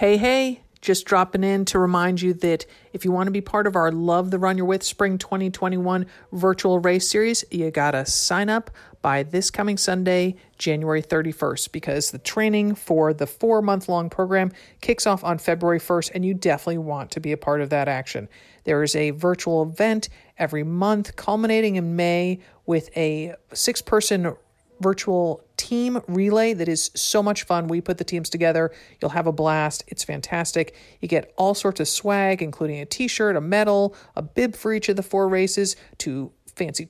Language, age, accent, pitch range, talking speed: English, 50-69, American, 160-200 Hz, 185 wpm